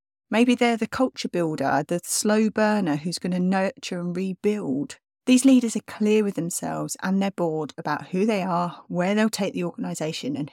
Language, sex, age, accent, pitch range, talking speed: English, female, 30-49, British, 175-235 Hz, 190 wpm